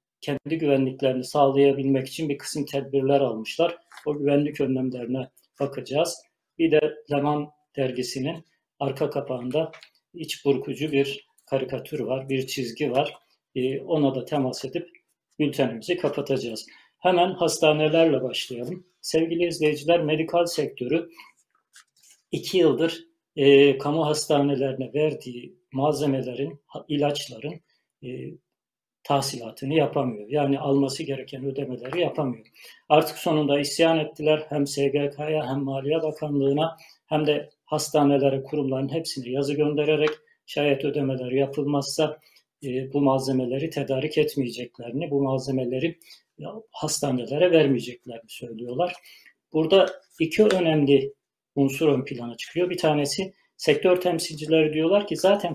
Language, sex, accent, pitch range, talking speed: Turkish, male, native, 135-160 Hz, 105 wpm